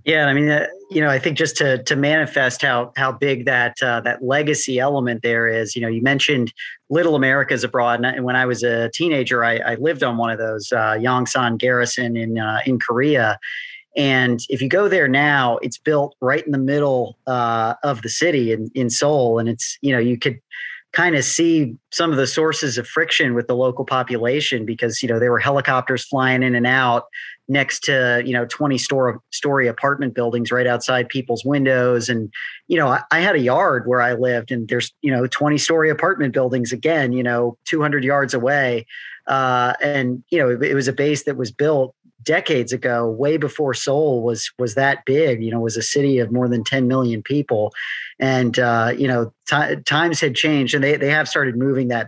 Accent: American